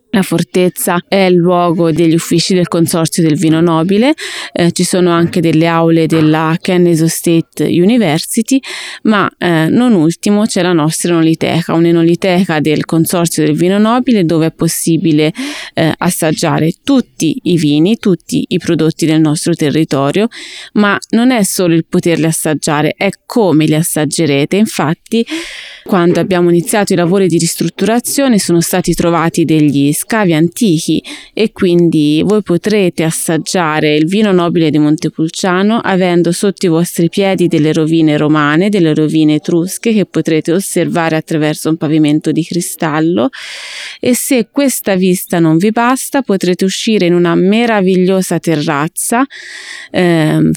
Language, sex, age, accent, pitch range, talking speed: Italian, female, 20-39, native, 160-195 Hz, 140 wpm